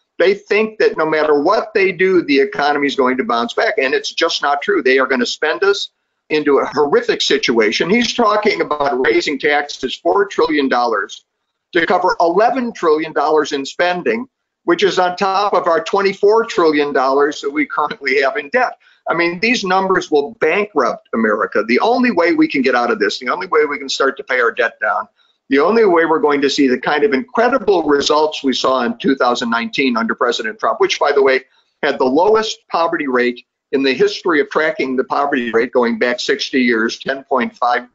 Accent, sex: American, male